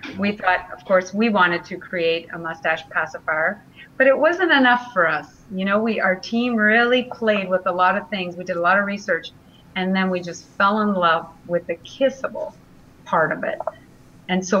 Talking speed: 205 wpm